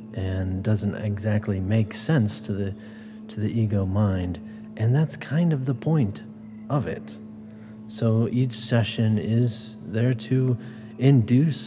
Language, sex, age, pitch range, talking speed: English, male, 40-59, 105-115 Hz, 135 wpm